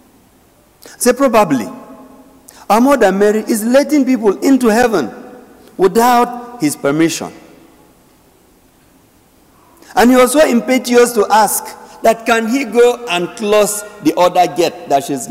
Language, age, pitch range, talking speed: English, 50-69, 155-250 Hz, 120 wpm